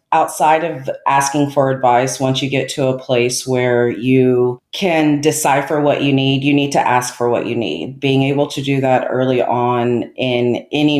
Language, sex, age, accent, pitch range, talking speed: English, female, 40-59, American, 120-140 Hz, 190 wpm